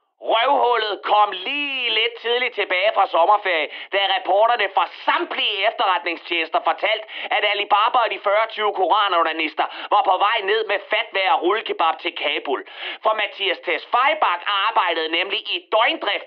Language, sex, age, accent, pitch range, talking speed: Danish, male, 30-49, native, 195-280 Hz, 135 wpm